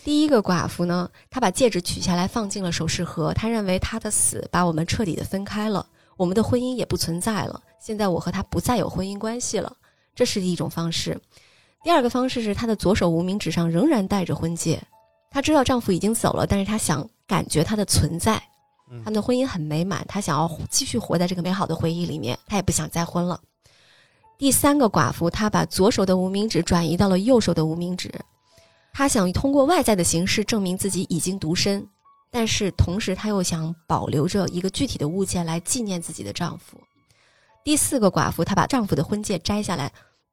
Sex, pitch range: female, 170-220 Hz